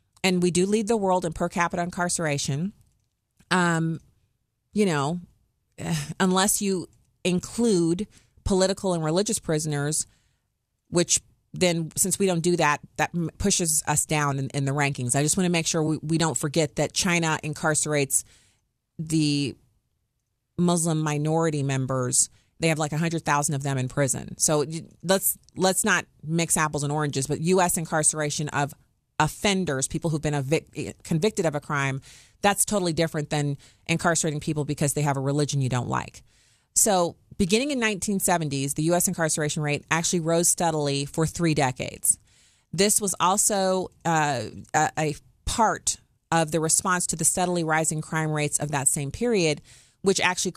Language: English